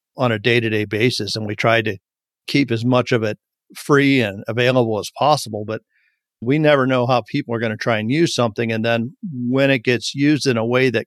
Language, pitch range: English, 115-130 Hz